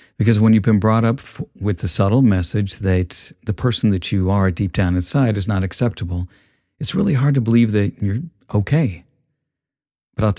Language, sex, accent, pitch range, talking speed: English, male, American, 95-120 Hz, 185 wpm